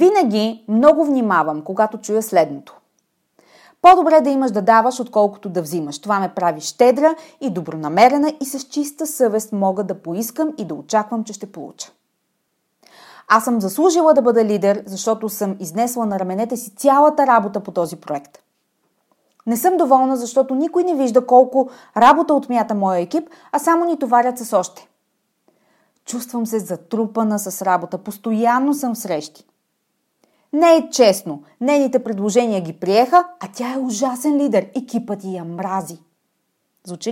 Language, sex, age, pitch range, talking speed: Bulgarian, female, 30-49, 195-275 Hz, 150 wpm